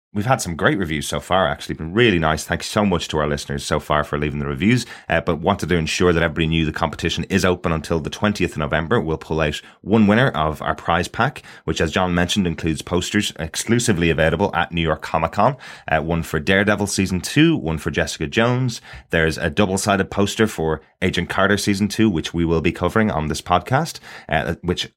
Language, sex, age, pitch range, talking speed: English, male, 30-49, 80-100 Hz, 220 wpm